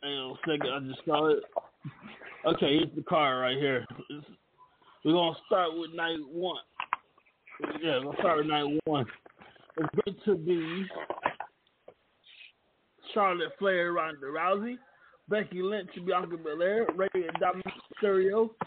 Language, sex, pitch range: English, male, 160-195 Hz